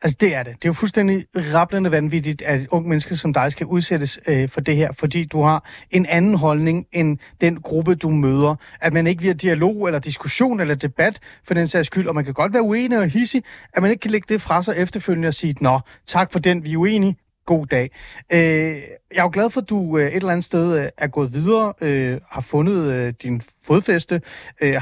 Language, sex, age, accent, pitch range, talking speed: Danish, male, 30-49, native, 145-180 Hz, 235 wpm